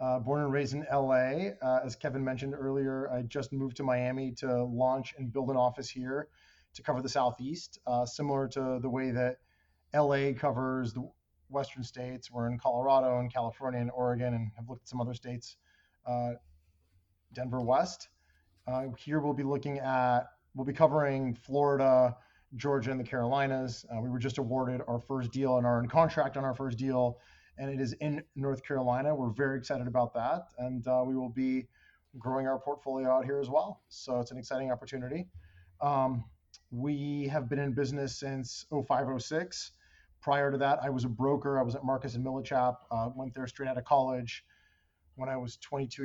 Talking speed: 190 wpm